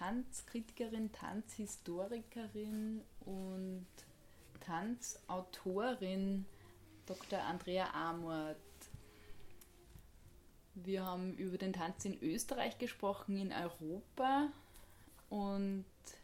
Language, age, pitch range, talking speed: English, 20-39, 175-215 Hz, 65 wpm